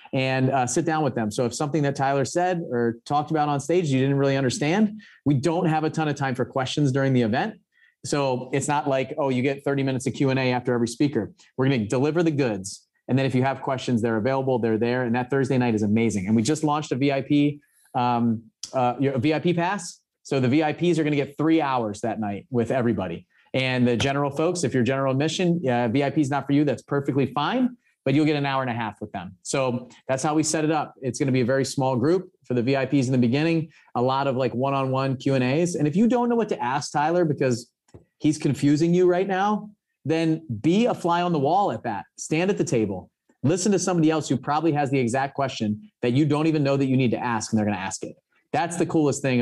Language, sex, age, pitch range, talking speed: English, male, 30-49, 125-155 Hz, 250 wpm